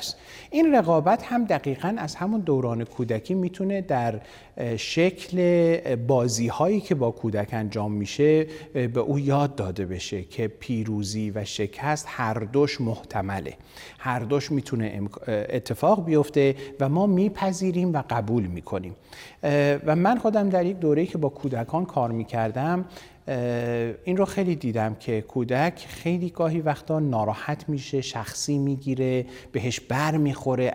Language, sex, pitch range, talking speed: Persian, male, 115-150 Hz, 135 wpm